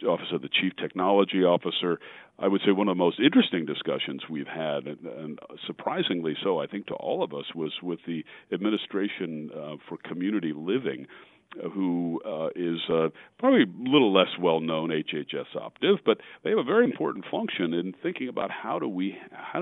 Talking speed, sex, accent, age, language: 175 wpm, male, American, 50-69, English